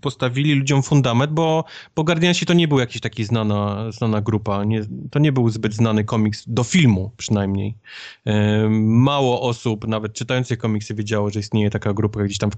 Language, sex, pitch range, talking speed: Polish, male, 110-140 Hz, 170 wpm